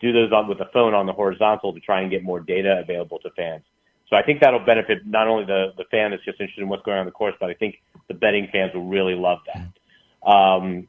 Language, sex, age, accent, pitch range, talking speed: English, male, 30-49, American, 95-110 Hz, 270 wpm